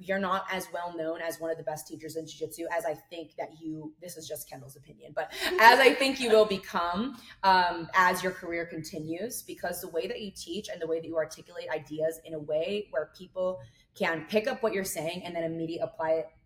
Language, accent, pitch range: English, American, 160-200 Hz